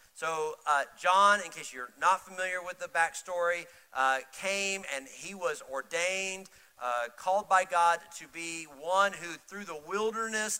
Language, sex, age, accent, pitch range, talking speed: English, male, 50-69, American, 155-215 Hz, 160 wpm